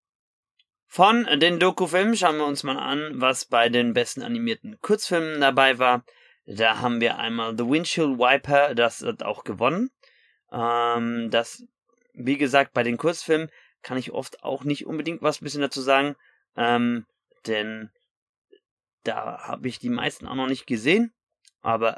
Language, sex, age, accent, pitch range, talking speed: German, male, 30-49, German, 120-155 Hz, 155 wpm